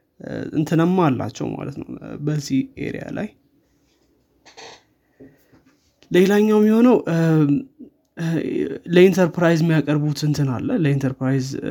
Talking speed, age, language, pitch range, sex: 80 wpm, 20-39, Amharic, 140-155 Hz, male